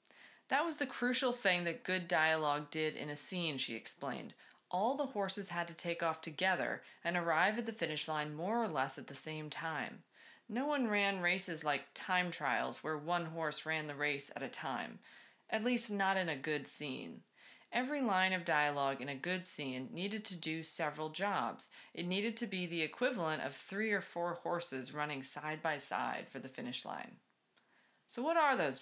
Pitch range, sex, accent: 155-205 Hz, female, American